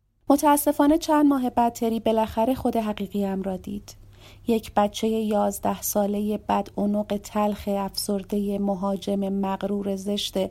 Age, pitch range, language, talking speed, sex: 30-49, 190-225 Hz, Persian, 120 wpm, female